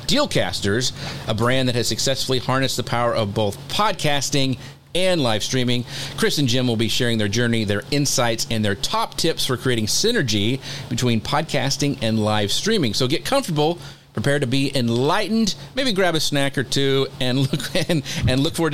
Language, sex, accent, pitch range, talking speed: English, male, American, 120-140 Hz, 180 wpm